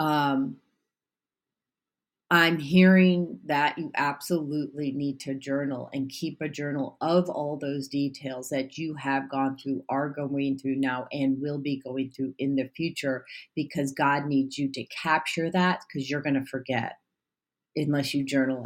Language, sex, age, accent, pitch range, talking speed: English, female, 40-59, American, 135-160 Hz, 160 wpm